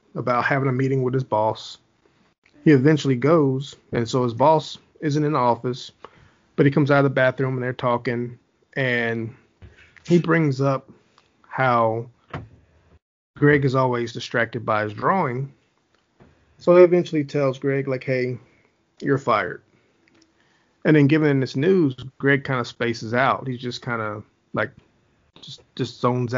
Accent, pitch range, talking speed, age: American, 115-140 Hz, 150 wpm, 30-49